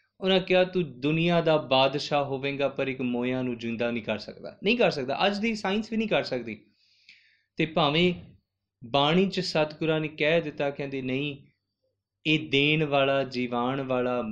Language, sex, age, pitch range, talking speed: Punjabi, male, 20-39, 125-185 Hz, 170 wpm